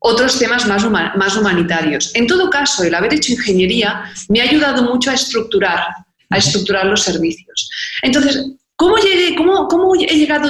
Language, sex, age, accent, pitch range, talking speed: Spanish, female, 40-59, Spanish, 210-285 Hz, 135 wpm